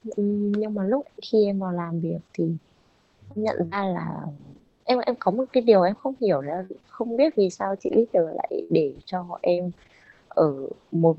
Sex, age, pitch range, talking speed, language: female, 20-39, 165-210 Hz, 180 wpm, Vietnamese